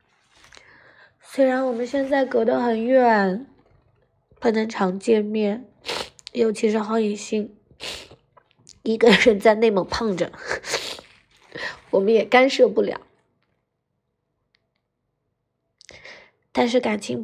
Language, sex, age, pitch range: Chinese, female, 20-39, 200-250 Hz